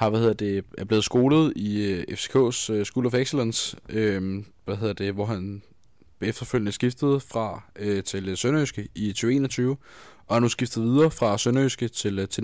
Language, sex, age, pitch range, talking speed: Danish, male, 20-39, 100-125 Hz, 155 wpm